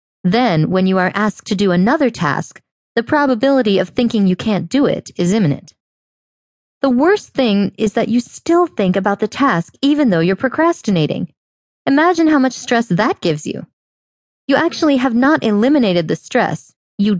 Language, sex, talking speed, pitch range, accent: English, female, 170 wpm, 180-260 Hz, American